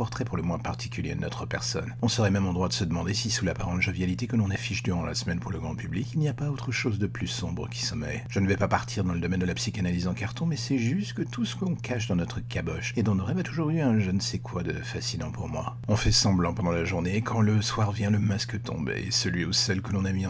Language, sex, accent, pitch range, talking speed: French, male, French, 95-120 Hz, 305 wpm